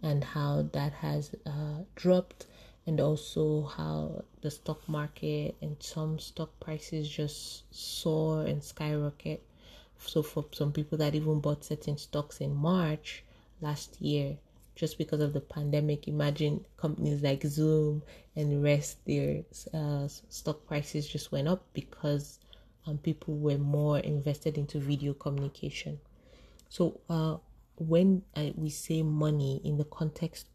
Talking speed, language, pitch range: 135 wpm, English, 145-155 Hz